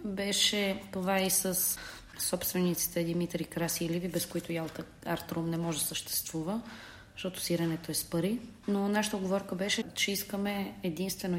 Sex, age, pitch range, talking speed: female, 30-49, 170-195 Hz, 155 wpm